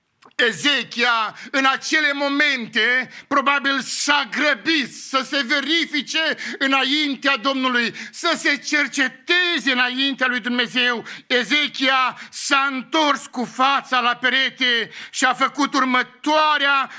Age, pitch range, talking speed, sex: 50-69, 240-285 Hz, 100 wpm, male